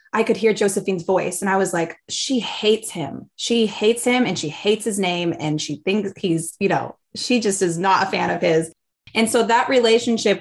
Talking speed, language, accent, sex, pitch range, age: 220 wpm, English, American, female, 185-225 Hz, 20-39